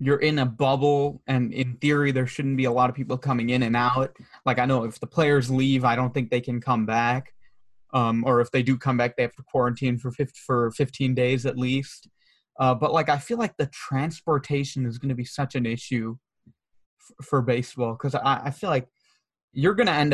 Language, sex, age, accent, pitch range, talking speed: English, male, 20-39, American, 125-140 Hz, 230 wpm